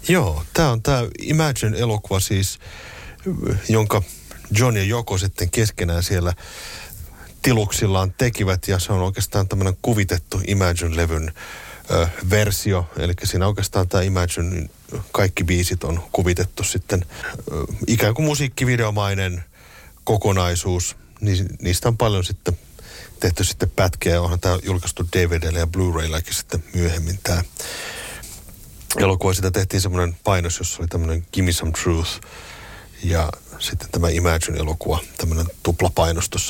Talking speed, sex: 125 wpm, male